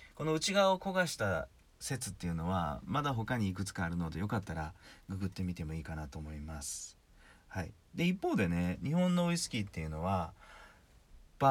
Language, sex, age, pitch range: Japanese, male, 40-59, 85-115 Hz